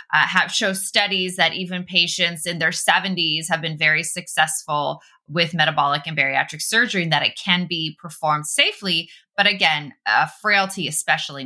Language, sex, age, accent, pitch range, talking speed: English, female, 20-39, American, 160-210 Hz, 170 wpm